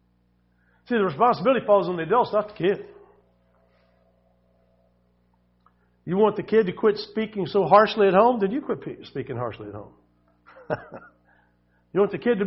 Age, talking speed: 50-69, 160 wpm